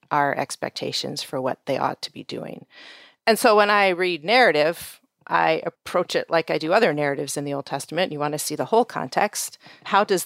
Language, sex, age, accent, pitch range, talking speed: English, female, 40-59, American, 155-195 Hz, 210 wpm